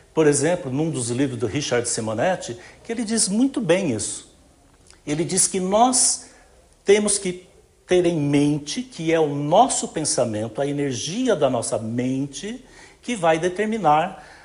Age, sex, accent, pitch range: 60-79, male, Brazilian, 135-205 Hz